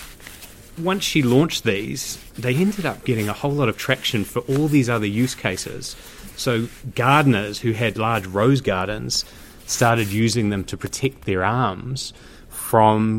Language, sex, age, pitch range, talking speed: English, male, 30-49, 105-130 Hz, 155 wpm